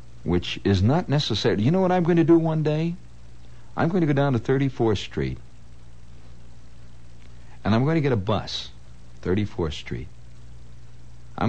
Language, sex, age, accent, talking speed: English, male, 60-79, American, 160 wpm